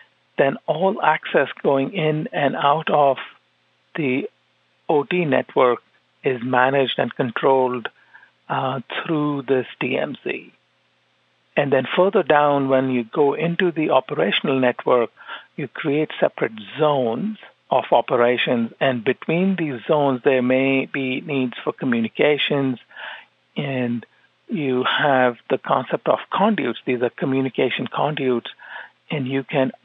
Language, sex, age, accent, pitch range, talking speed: English, male, 50-69, Indian, 125-150 Hz, 120 wpm